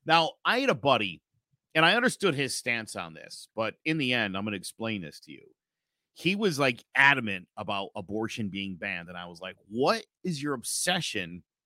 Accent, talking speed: American, 200 wpm